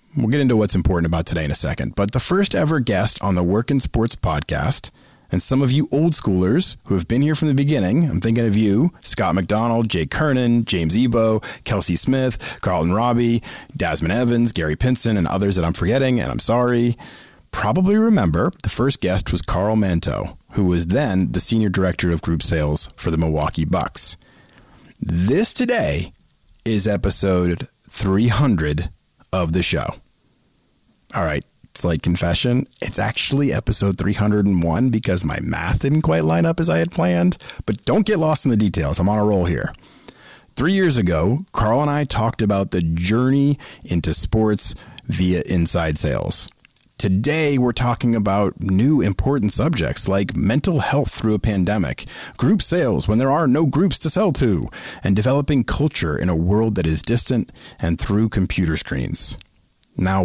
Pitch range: 90-125 Hz